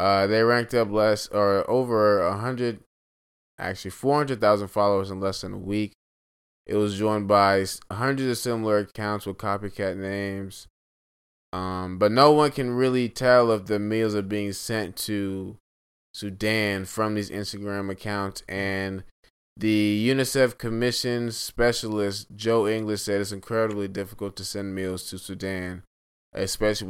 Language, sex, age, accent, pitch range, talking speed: English, male, 20-39, American, 95-115 Hz, 140 wpm